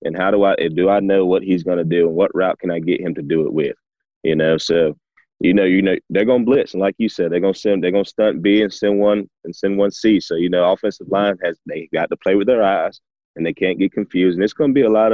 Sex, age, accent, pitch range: male, 20-39, American, 90-100 Hz